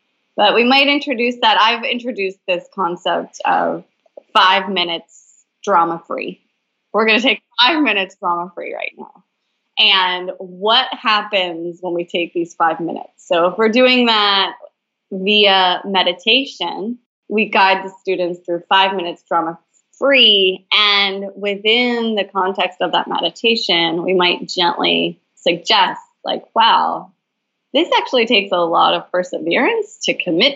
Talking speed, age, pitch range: 135 wpm, 20-39, 180-245 Hz